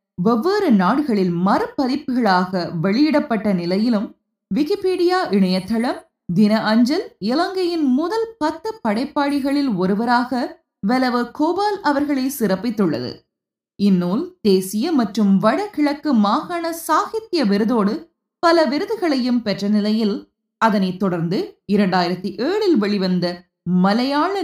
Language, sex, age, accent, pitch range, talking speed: Tamil, female, 20-39, native, 195-305 Hz, 80 wpm